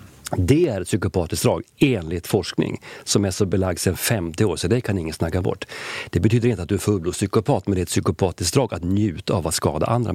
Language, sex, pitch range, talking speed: Swedish, male, 90-115 Hz, 235 wpm